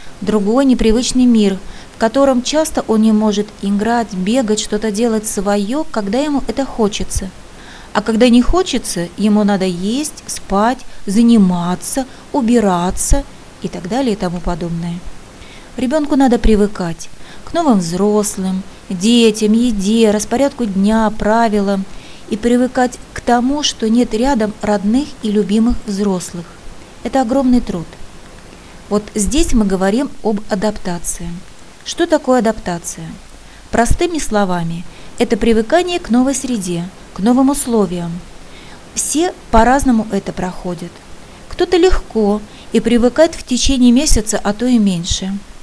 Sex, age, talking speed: female, 30-49, 120 wpm